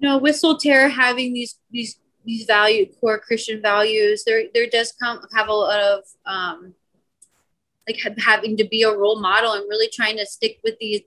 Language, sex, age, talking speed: English, female, 30-49, 190 wpm